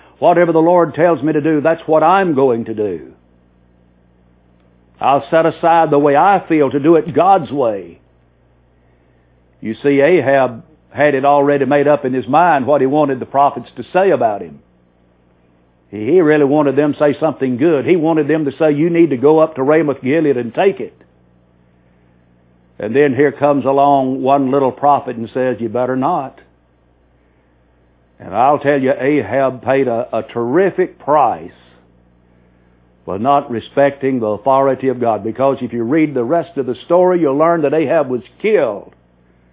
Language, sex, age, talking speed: English, male, 60-79, 175 wpm